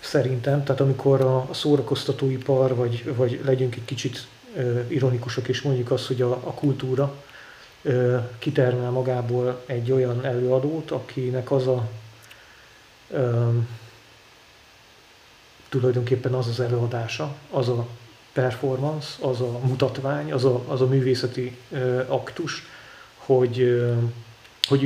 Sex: male